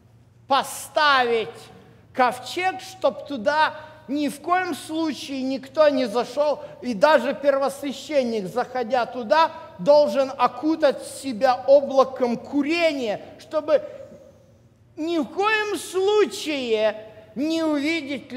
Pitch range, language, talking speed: 185-280 Hz, Russian, 90 wpm